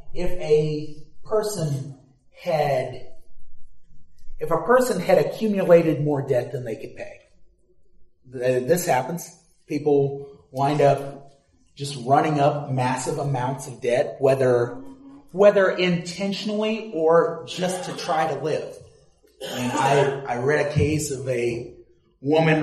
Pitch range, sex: 135-190 Hz, male